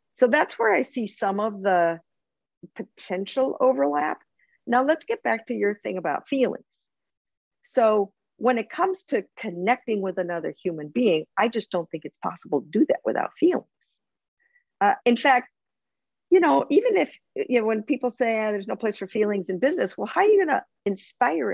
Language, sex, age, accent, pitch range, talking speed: English, female, 50-69, American, 180-270 Hz, 185 wpm